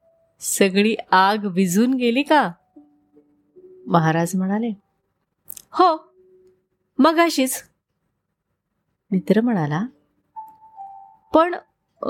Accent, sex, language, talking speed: native, female, Marathi, 50 wpm